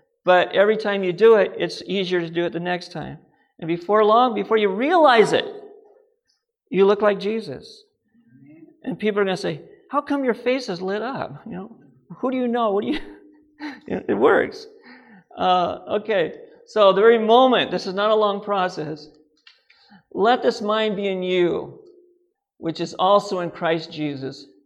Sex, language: male, English